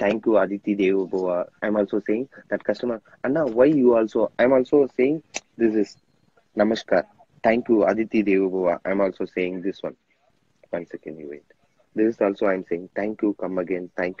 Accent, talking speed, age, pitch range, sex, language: native, 200 wpm, 20-39, 95-125 Hz, male, Telugu